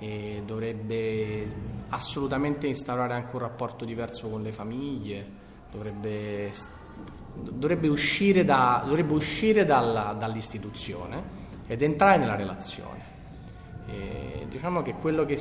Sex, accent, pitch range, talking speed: male, native, 105-145 Hz, 110 wpm